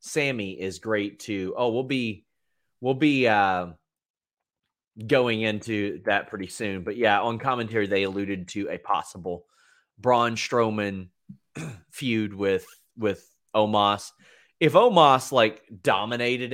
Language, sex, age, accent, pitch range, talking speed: English, male, 30-49, American, 105-135 Hz, 125 wpm